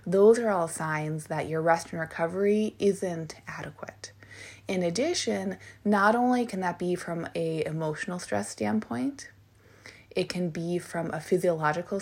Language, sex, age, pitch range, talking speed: English, female, 20-39, 160-210 Hz, 145 wpm